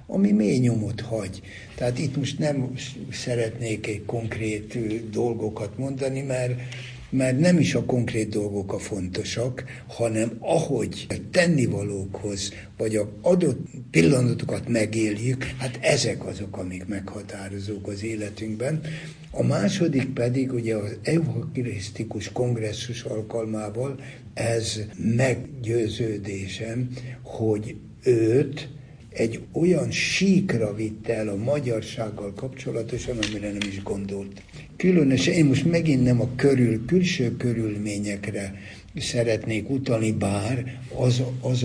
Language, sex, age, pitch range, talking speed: Hungarian, male, 60-79, 105-130 Hz, 110 wpm